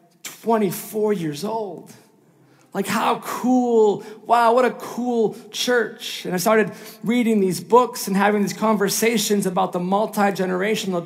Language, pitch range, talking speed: English, 180-220 Hz, 130 wpm